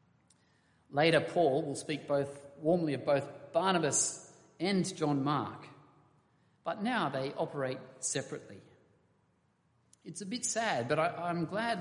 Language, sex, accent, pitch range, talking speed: English, male, Australian, 125-165 Hz, 125 wpm